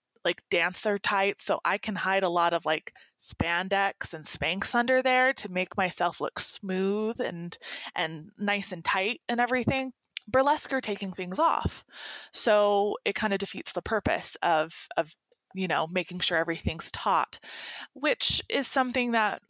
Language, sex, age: English, female, 20-39